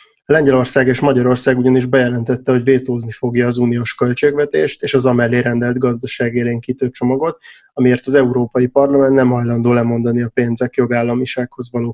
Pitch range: 120-135 Hz